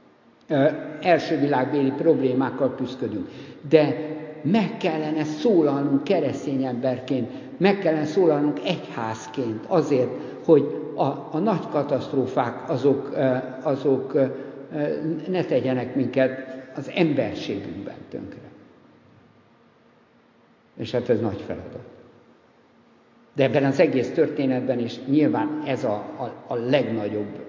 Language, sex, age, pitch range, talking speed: Hungarian, male, 60-79, 125-150 Hz, 100 wpm